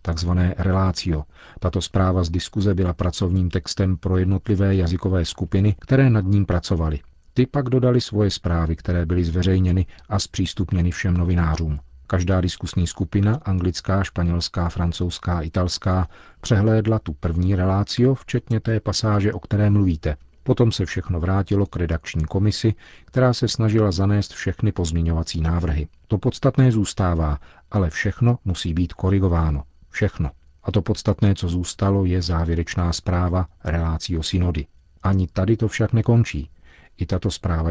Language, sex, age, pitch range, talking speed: Czech, male, 40-59, 85-105 Hz, 140 wpm